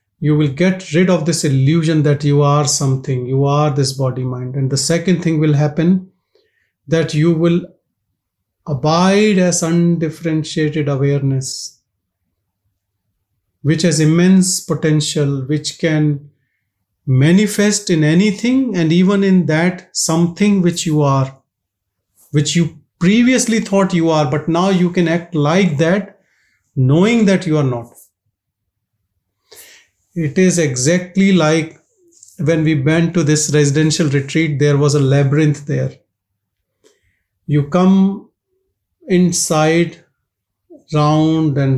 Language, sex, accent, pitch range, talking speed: English, male, Indian, 135-170 Hz, 120 wpm